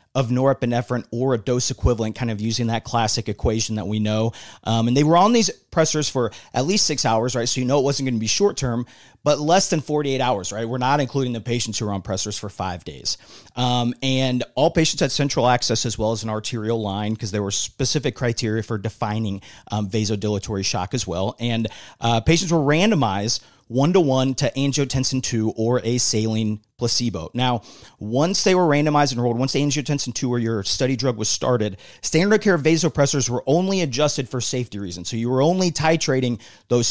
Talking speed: 200 wpm